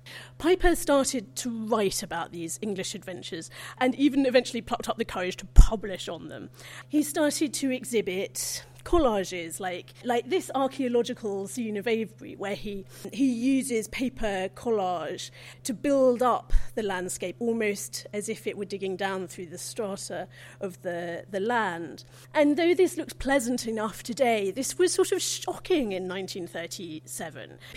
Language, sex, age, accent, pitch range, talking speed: English, female, 40-59, British, 190-270 Hz, 150 wpm